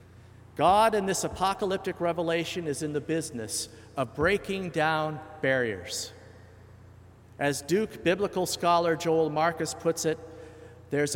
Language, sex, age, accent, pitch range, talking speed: English, male, 50-69, American, 115-165 Hz, 120 wpm